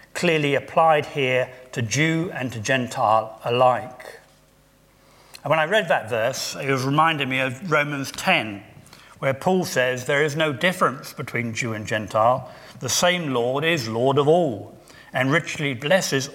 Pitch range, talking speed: 125-155 Hz, 160 wpm